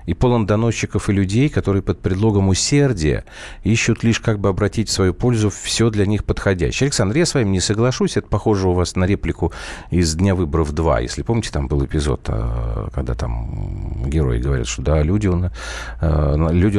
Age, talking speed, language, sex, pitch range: 40-59, 175 wpm, Russian, male, 80-110 Hz